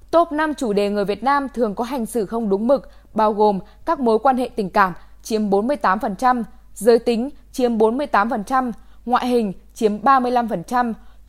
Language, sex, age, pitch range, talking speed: Vietnamese, female, 10-29, 215-275 Hz, 170 wpm